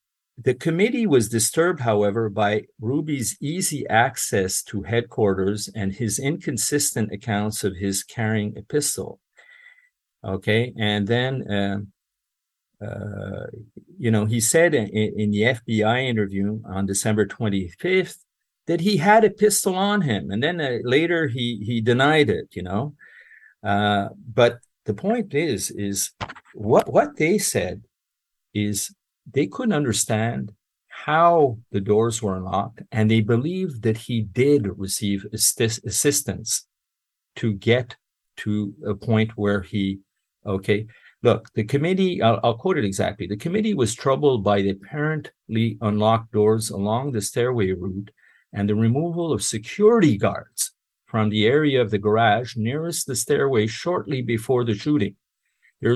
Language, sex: English, male